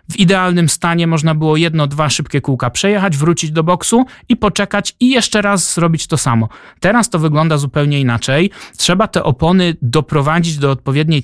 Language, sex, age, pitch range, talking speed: Polish, male, 30-49, 140-180 Hz, 170 wpm